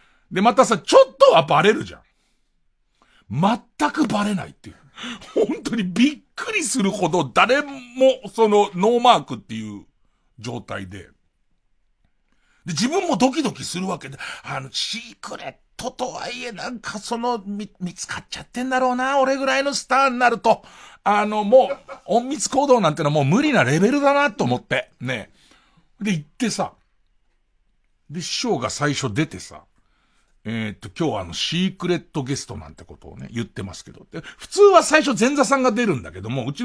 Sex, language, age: male, Japanese, 60-79